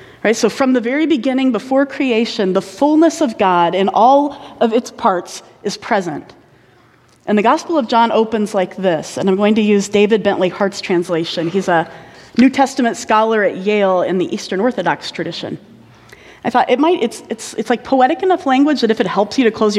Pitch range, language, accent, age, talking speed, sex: 185-245 Hz, English, American, 30-49, 195 wpm, female